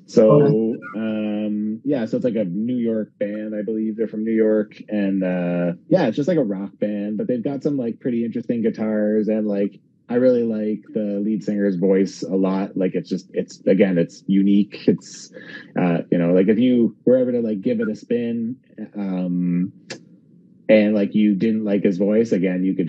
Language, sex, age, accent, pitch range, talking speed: English, male, 30-49, American, 95-115 Hz, 200 wpm